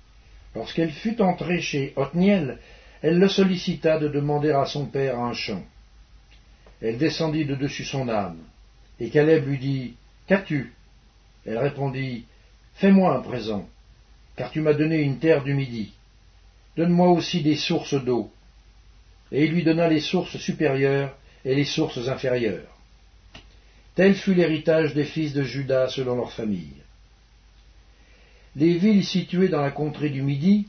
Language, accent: English, French